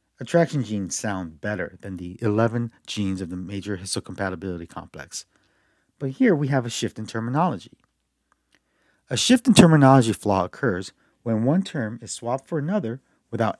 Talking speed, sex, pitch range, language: 155 wpm, male, 100-135 Hz, English